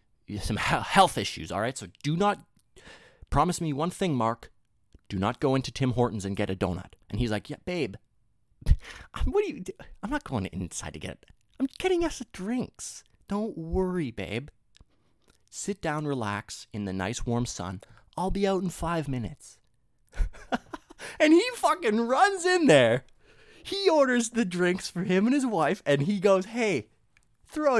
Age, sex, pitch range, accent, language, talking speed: 30-49, male, 110-180 Hz, American, English, 175 wpm